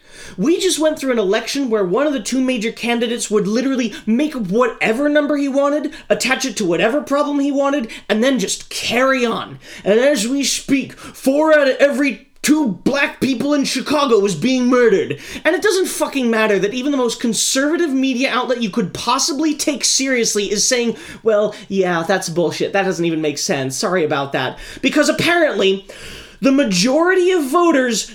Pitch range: 210-290 Hz